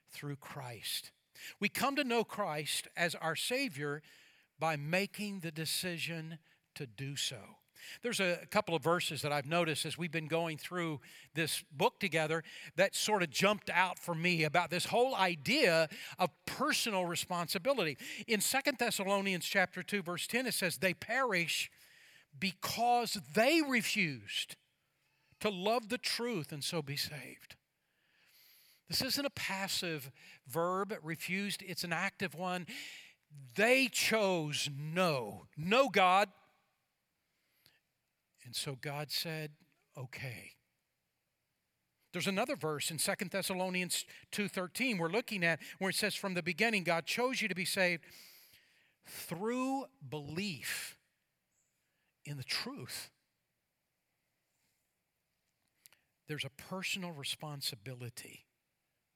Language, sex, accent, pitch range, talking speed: English, male, American, 155-200 Hz, 120 wpm